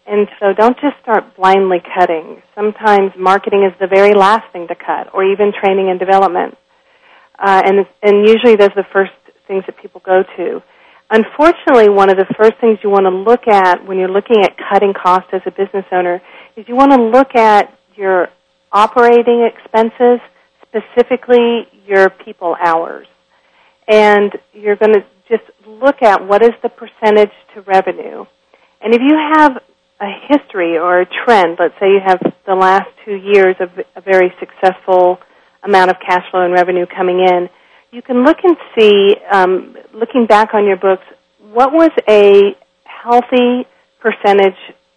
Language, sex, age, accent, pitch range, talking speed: English, female, 40-59, American, 190-225 Hz, 170 wpm